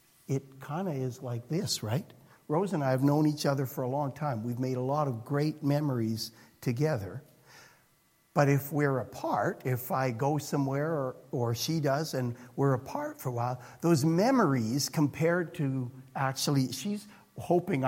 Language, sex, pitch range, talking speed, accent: English, male, 140-220 Hz, 170 wpm, American